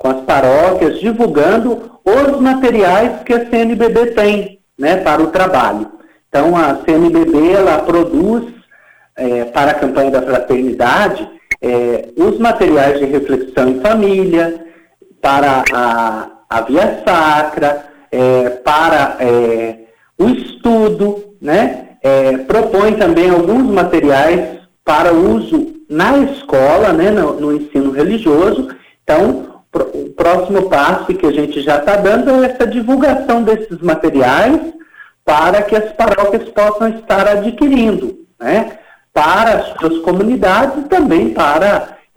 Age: 50-69